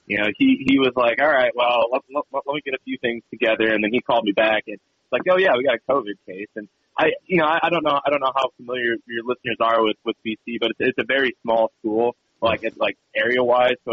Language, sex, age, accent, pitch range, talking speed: English, male, 20-39, American, 110-130 Hz, 280 wpm